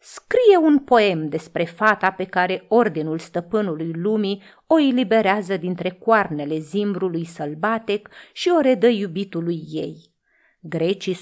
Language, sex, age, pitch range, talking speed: Romanian, female, 30-49, 170-240 Hz, 120 wpm